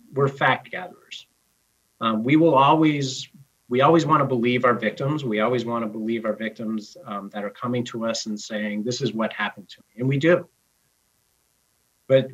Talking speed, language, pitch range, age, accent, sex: 190 wpm, English, 105-130 Hz, 40-59, American, male